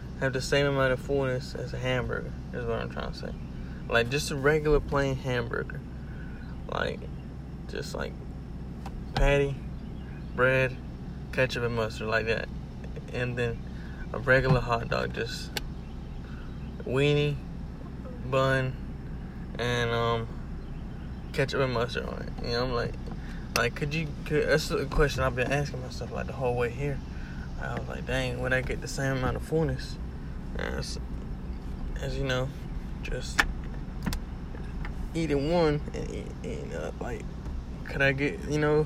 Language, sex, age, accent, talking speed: English, male, 20-39, American, 150 wpm